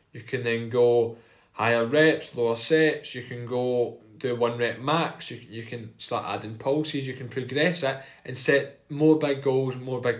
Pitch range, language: 125-155 Hz, English